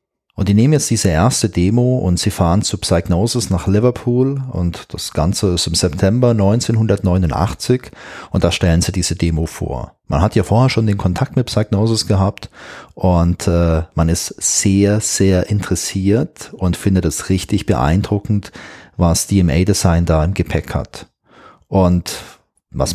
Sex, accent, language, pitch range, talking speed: male, German, German, 90-115 Hz, 155 wpm